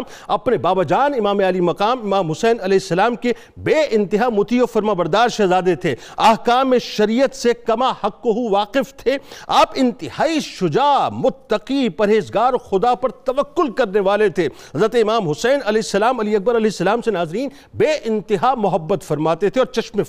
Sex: male